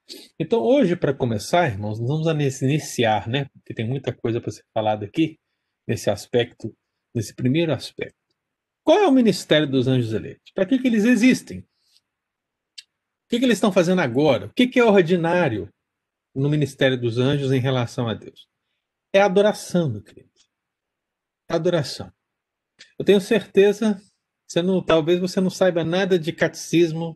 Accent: Brazilian